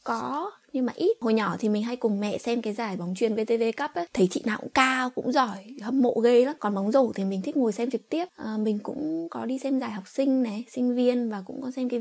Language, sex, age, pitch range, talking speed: Vietnamese, female, 20-39, 195-255 Hz, 285 wpm